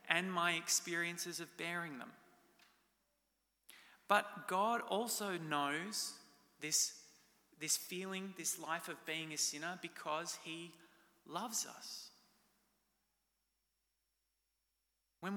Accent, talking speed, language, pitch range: Australian, 95 wpm, English, 160-190 Hz